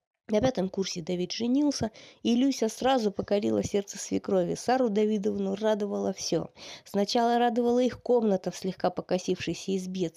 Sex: female